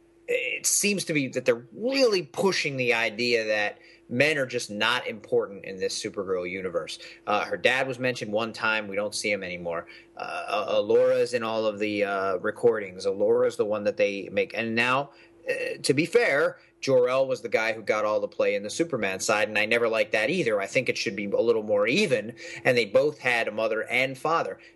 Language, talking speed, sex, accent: English, 215 wpm, male, American